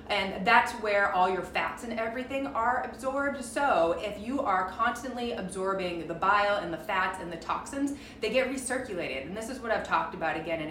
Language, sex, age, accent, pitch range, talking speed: English, female, 30-49, American, 175-235 Hz, 200 wpm